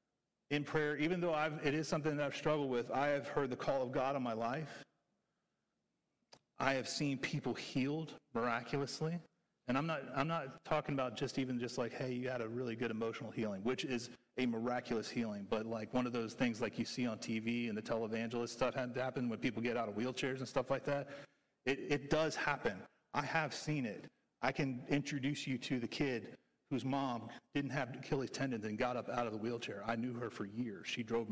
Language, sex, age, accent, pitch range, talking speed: English, male, 40-59, American, 115-140 Hz, 220 wpm